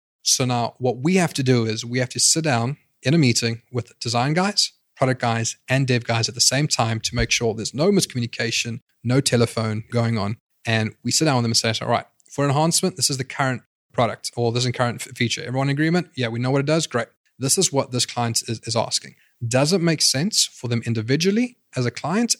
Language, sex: English, male